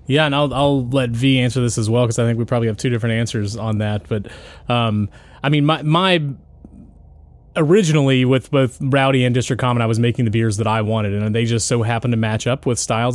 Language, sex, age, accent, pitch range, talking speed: English, male, 20-39, American, 110-125 Hz, 235 wpm